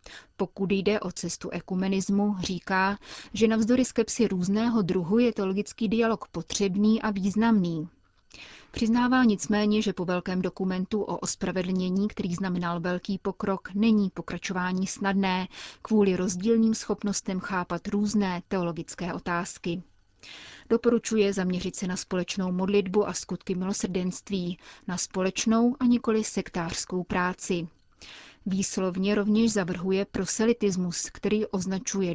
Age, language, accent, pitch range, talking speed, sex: 30-49, Czech, native, 185-215 Hz, 110 wpm, female